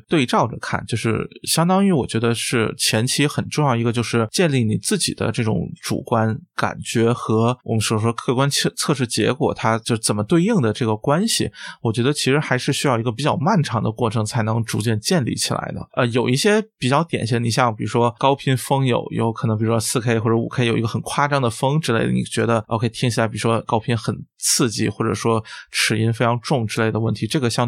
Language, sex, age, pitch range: Chinese, male, 20-39, 115-140 Hz